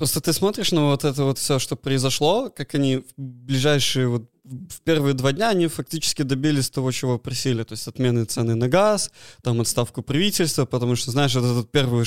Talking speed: 200 wpm